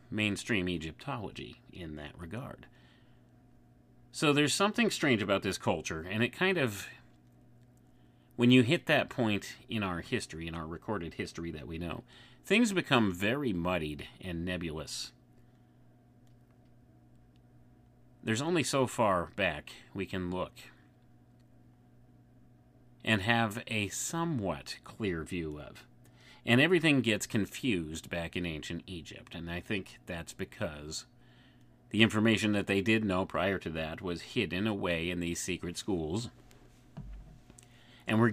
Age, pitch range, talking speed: 30-49, 85-120 Hz, 130 wpm